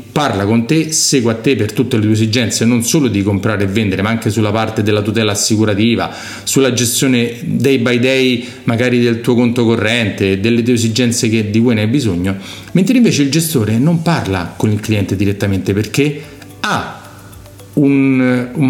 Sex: male